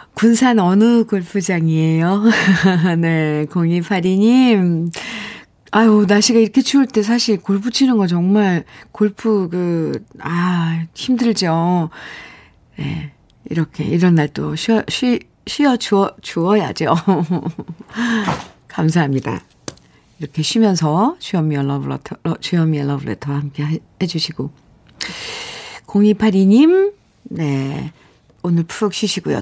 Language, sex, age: Korean, female, 50-69